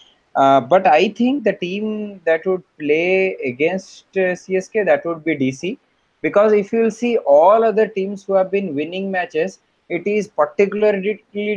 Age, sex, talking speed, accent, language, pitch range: 20-39, male, 160 wpm, Indian, English, 160-195 Hz